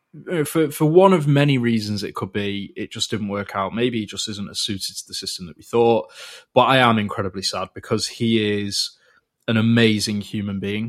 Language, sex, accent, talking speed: English, male, British, 210 wpm